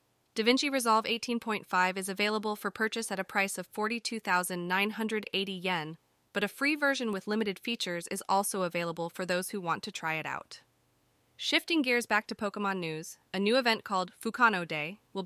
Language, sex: English, female